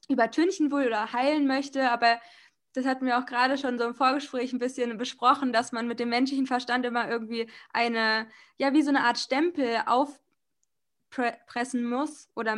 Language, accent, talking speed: German, German, 170 wpm